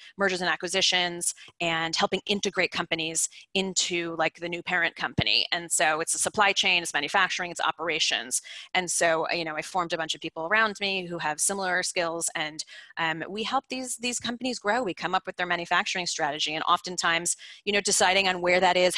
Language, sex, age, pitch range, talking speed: English, female, 30-49, 170-200 Hz, 200 wpm